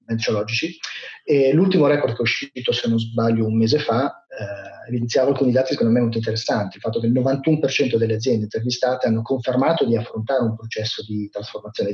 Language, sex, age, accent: Italian, male, 30-49, native